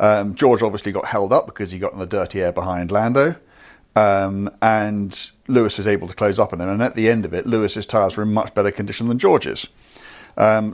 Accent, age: British, 40-59